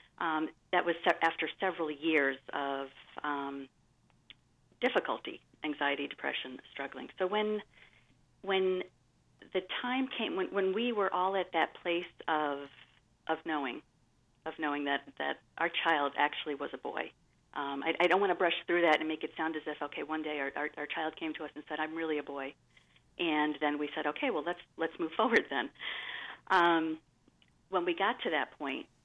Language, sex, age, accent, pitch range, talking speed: English, female, 40-59, American, 150-195 Hz, 185 wpm